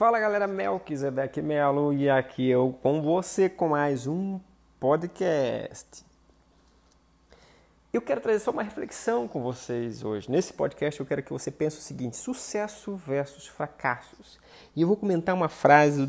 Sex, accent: male, Brazilian